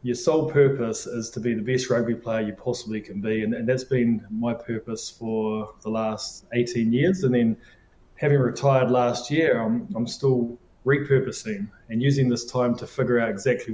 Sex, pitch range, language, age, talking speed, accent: male, 115-130 Hz, English, 20-39, 190 wpm, New Zealand